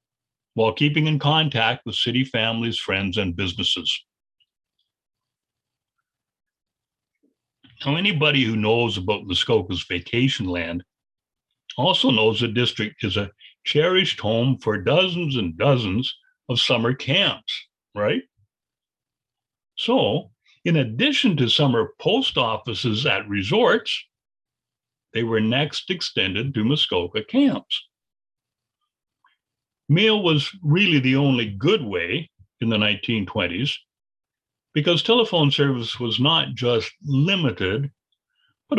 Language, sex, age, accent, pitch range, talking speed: English, male, 60-79, American, 110-155 Hz, 105 wpm